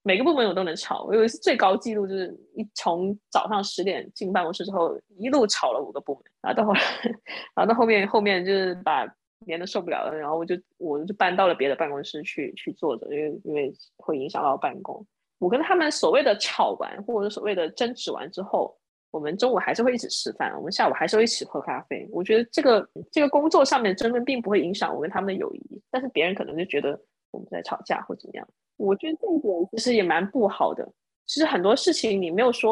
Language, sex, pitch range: Chinese, female, 175-245 Hz